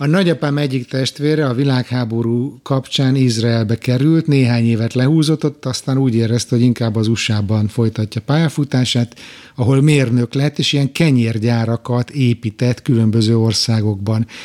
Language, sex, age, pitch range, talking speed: Hungarian, male, 60-79, 120-145 Hz, 125 wpm